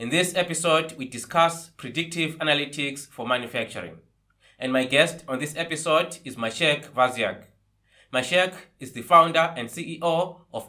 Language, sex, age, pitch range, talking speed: English, male, 20-39, 130-160 Hz, 140 wpm